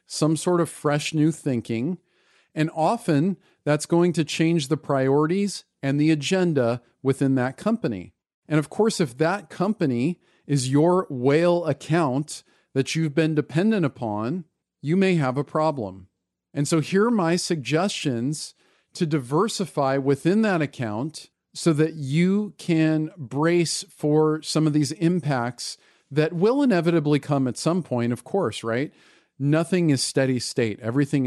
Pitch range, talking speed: 130-165 Hz, 145 wpm